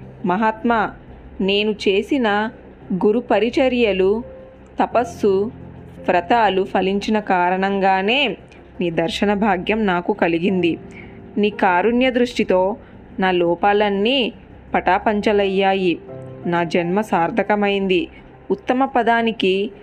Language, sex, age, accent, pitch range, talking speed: Telugu, female, 20-39, native, 185-220 Hz, 75 wpm